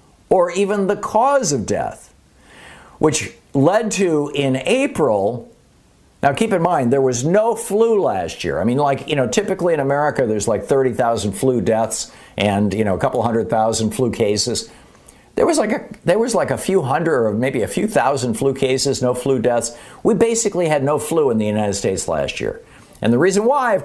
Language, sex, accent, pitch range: English, male, American, 115-180 Hz